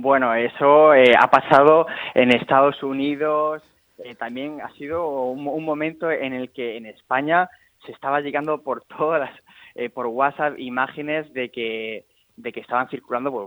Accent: Spanish